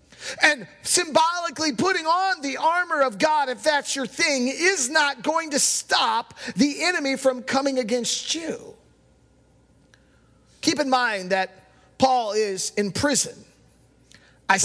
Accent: American